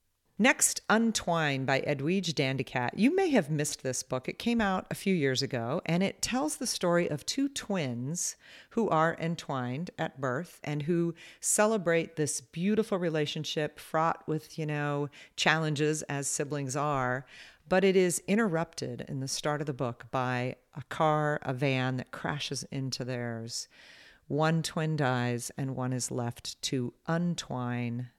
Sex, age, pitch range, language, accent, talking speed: female, 40-59, 130-165 Hz, English, American, 155 wpm